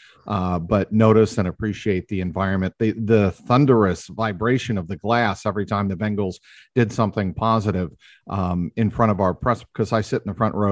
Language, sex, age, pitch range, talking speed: English, male, 40-59, 95-115 Hz, 190 wpm